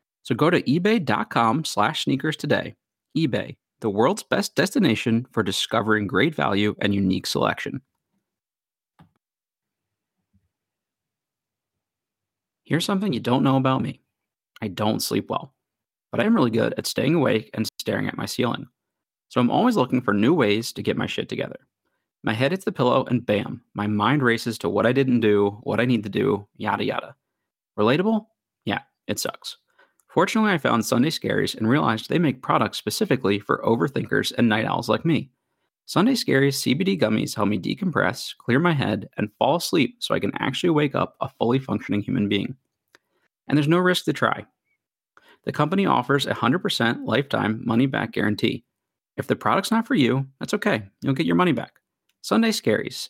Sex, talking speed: male, 170 wpm